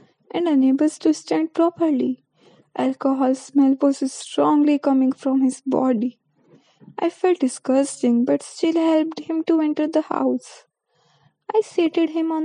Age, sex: 20-39, female